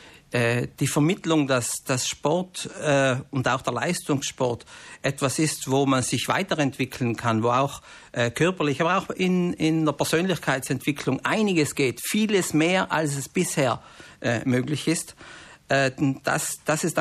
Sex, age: male, 50-69